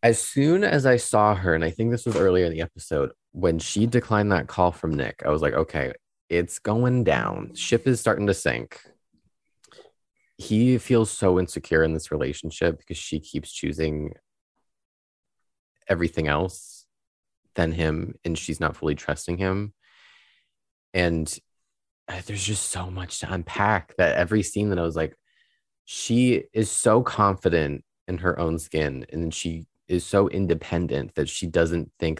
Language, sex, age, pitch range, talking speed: English, male, 20-39, 80-105 Hz, 160 wpm